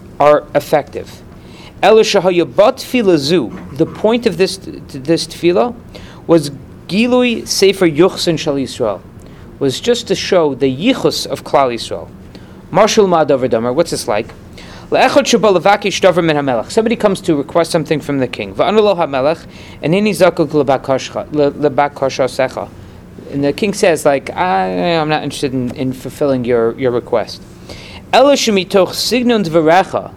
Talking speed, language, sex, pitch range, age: 145 wpm, English, male, 140-195 Hz, 40-59